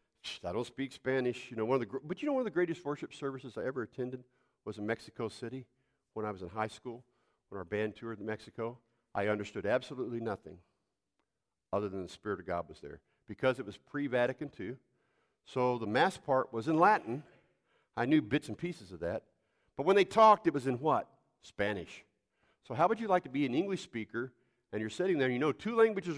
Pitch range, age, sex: 105-165 Hz, 50-69, male